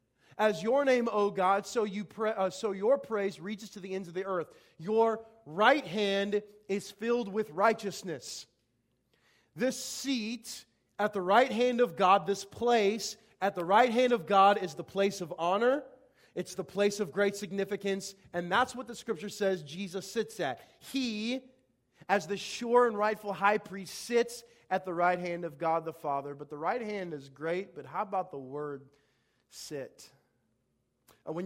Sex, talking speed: male, 175 wpm